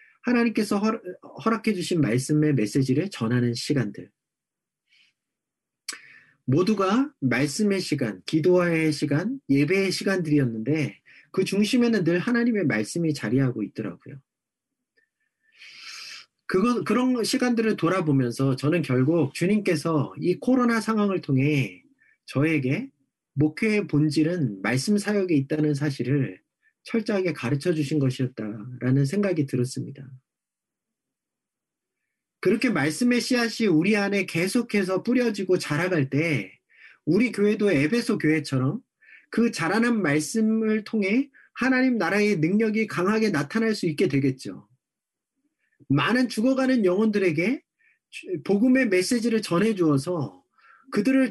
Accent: native